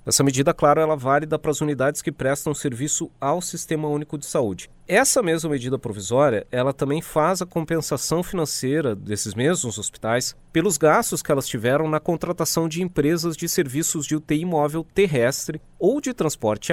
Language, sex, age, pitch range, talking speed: Portuguese, male, 30-49, 125-165 Hz, 170 wpm